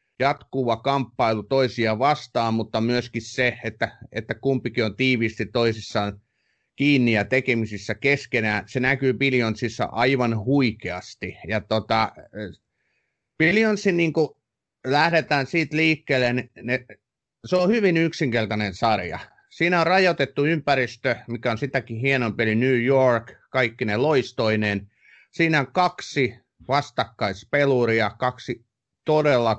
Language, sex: Finnish, male